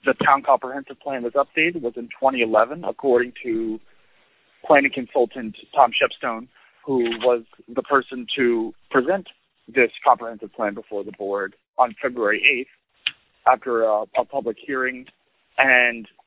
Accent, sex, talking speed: American, male, 135 wpm